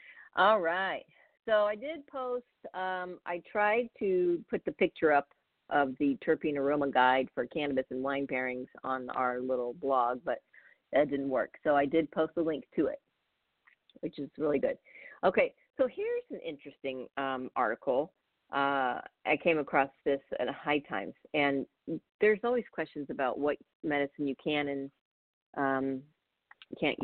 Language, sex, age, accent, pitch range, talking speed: English, female, 40-59, American, 140-205 Hz, 165 wpm